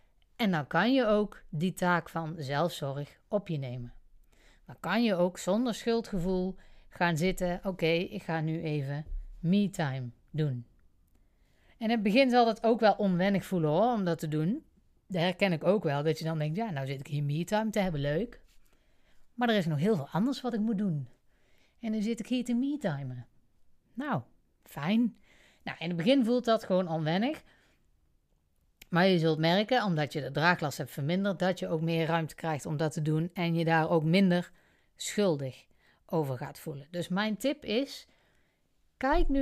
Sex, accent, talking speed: female, Dutch, 190 wpm